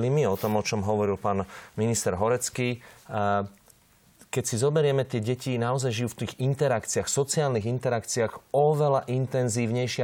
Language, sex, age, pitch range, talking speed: Slovak, male, 30-49, 105-130 Hz, 135 wpm